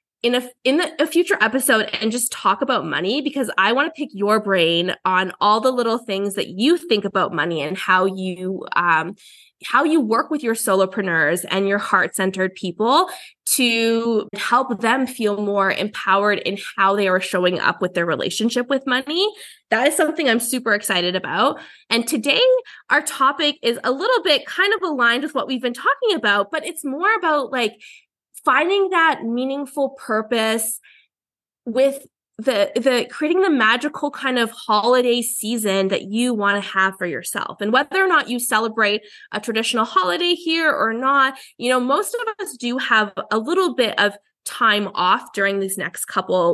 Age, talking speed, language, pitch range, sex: 20-39, 180 wpm, English, 210-295 Hz, female